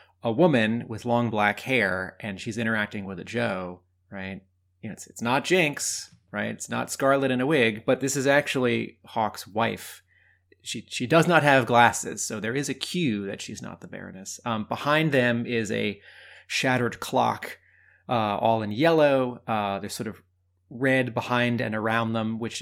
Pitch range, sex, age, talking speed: 105-130 Hz, male, 30-49, 185 wpm